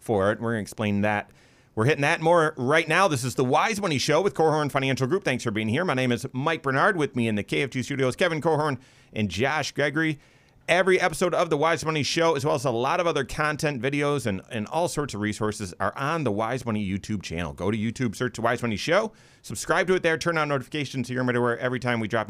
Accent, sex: American, male